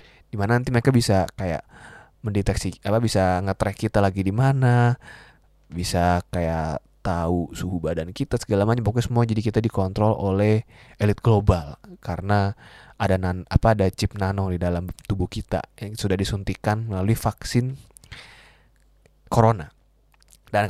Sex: male